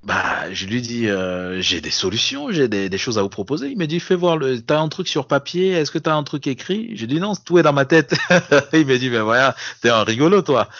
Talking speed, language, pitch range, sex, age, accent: 285 wpm, French, 95-130 Hz, male, 30-49, French